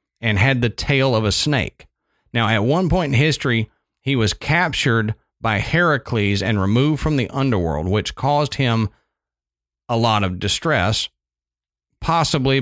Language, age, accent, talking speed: English, 40-59, American, 145 wpm